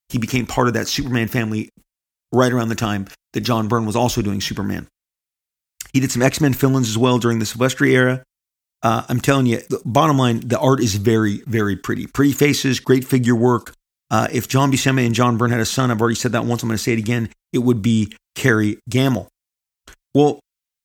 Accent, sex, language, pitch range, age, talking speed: American, male, English, 115-130 Hz, 40-59, 215 wpm